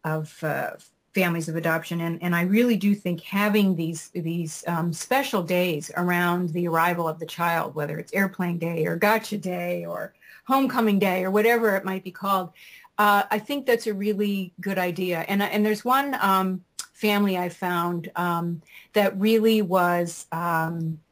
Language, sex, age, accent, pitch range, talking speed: English, female, 40-59, American, 170-210 Hz, 170 wpm